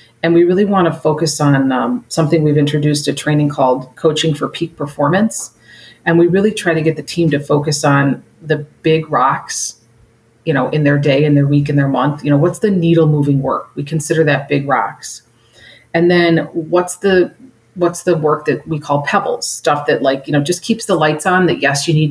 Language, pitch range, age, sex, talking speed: English, 140-165 Hz, 30-49, female, 215 wpm